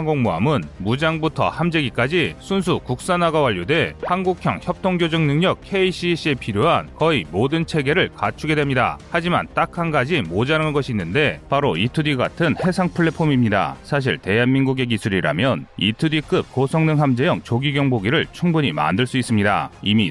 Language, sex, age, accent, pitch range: Korean, male, 30-49, native, 125-160 Hz